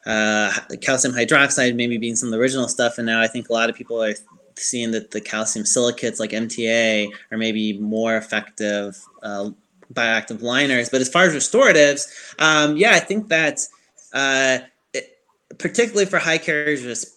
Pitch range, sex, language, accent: 115-140 Hz, male, English, American